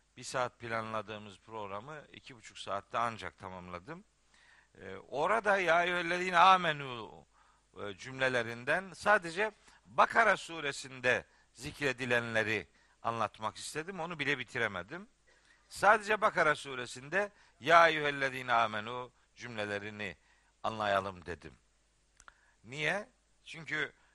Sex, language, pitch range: male, Turkish, 120-185 Hz